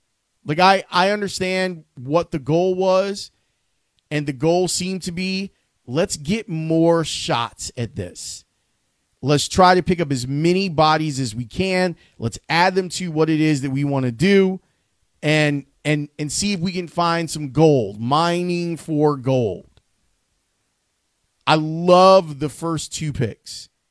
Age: 30-49